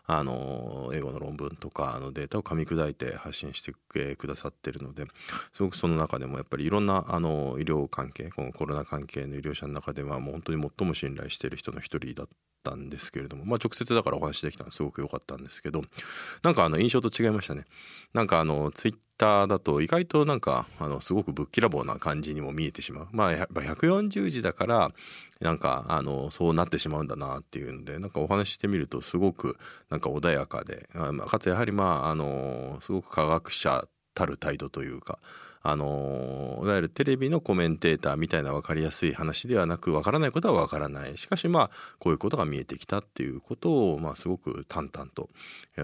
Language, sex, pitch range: Japanese, male, 70-100 Hz